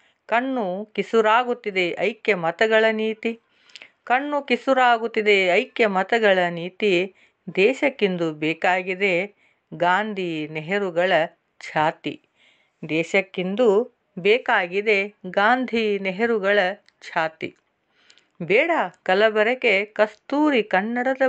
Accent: native